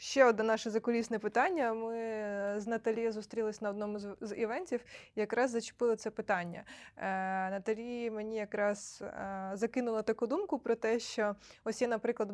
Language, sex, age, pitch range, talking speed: Ukrainian, female, 20-39, 195-235 Hz, 150 wpm